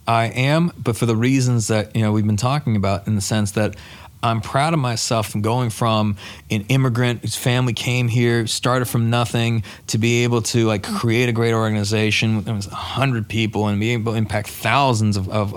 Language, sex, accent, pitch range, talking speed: English, male, American, 105-125 Hz, 210 wpm